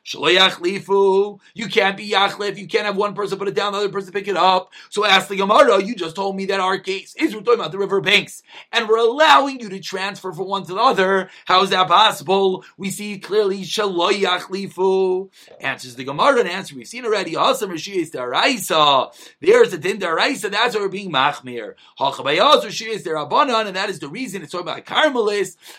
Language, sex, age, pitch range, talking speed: English, male, 30-49, 180-235 Hz, 200 wpm